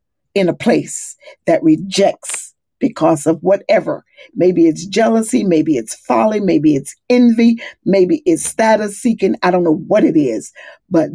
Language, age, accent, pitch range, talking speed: English, 50-69, American, 165-215 Hz, 150 wpm